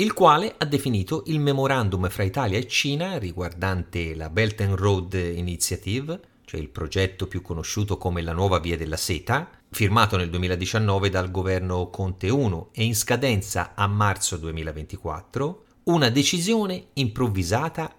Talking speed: 145 wpm